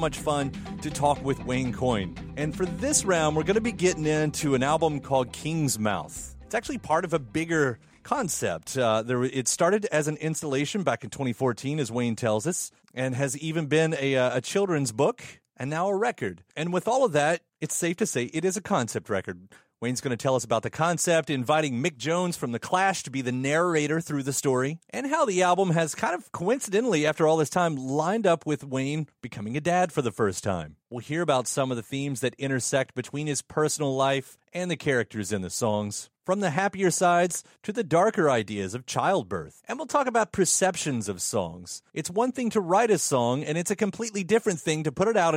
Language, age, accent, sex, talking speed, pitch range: English, 30-49, American, male, 220 wpm, 125-175 Hz